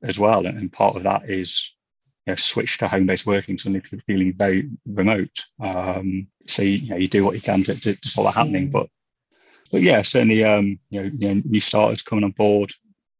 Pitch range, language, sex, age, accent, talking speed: 95-105 Hz, English, male, 30-49, British, 195 wpm